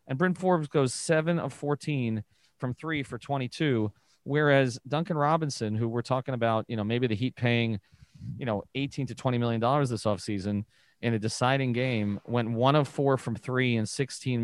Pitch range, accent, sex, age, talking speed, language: 110-135 Hz, American, male, 30-49, 185 wpm, English